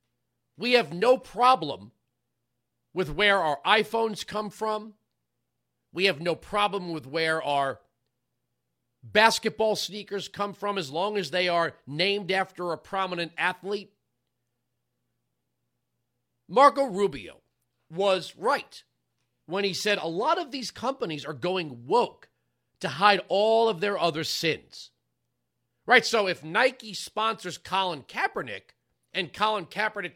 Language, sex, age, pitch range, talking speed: English, male, 40-59, 160-220 Hz, 125 wpm